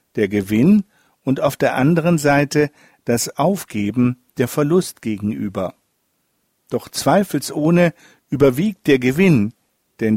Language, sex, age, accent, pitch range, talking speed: German, male, 50-69, German, 115-160 Hz, 105 wpm